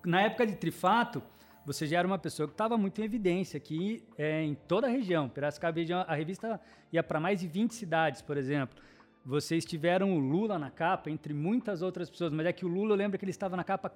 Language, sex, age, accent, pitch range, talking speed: Portuguese, male, 20-39, Brazilian, 155-205 Hz, 230 wpm